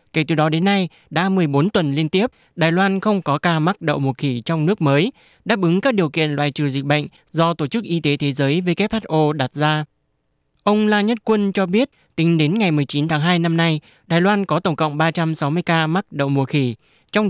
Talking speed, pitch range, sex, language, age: 230 wpm, 145-185 Hz, male, Vietnamese, 20-39